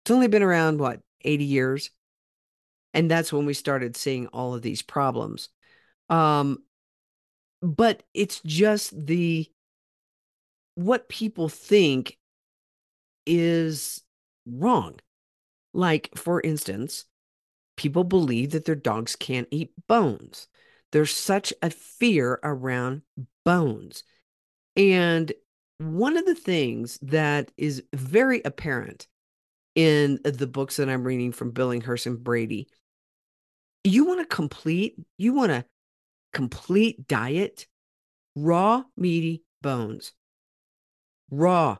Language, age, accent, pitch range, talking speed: English, 50-69, American, 135-170 Hz, 110 wpm